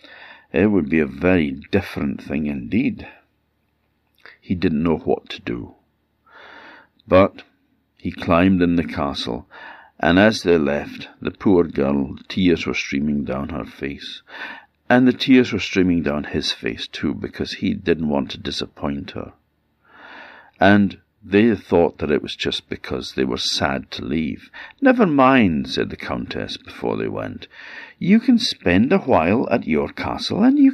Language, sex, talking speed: English, male, 155 wpm